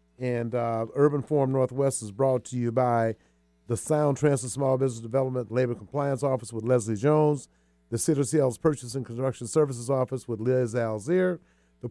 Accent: American